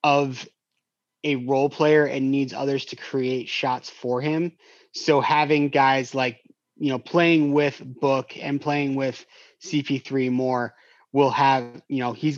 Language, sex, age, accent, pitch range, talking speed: English, male, 30-49, American, 135-170 Hz, 155 wpm